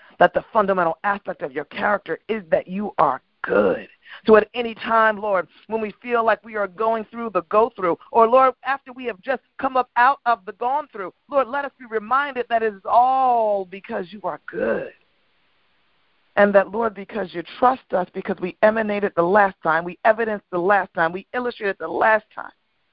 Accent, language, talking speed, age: American, English, 195 wpm, 40-59